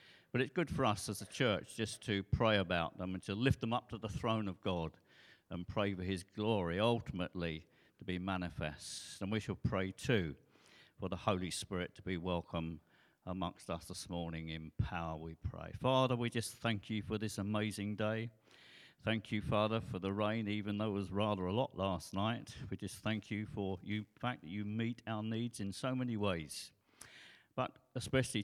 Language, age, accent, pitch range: English, 50-69, British, 95-120 Hz